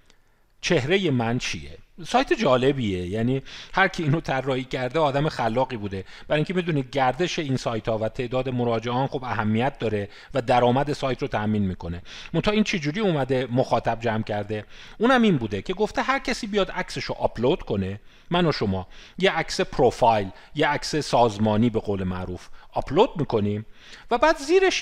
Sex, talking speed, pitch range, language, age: male, 170 wpm, 105-165 Hz, Persian, 40-59